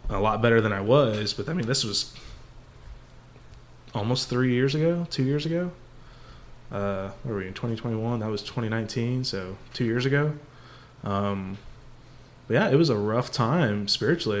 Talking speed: 165 wpm